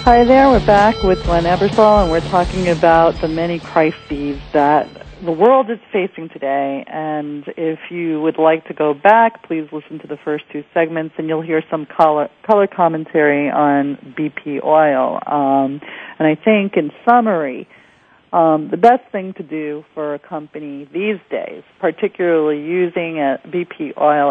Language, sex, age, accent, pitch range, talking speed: English, female, 40-59, American, 145-170 Hz, 165 wpm